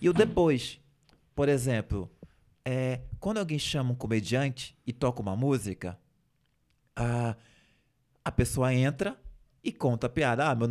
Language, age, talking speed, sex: Portuguese, 20-39, 135 wpm, male